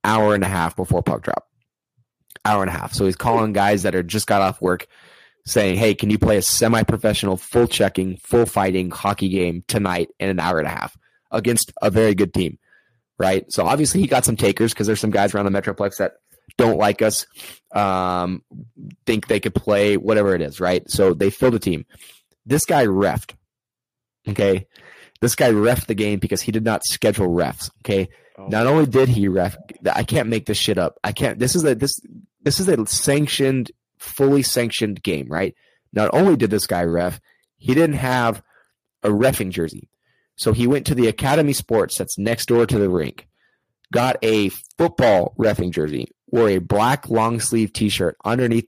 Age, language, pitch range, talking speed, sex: 20-39, English, 95-120 Hz, 190 wpm, male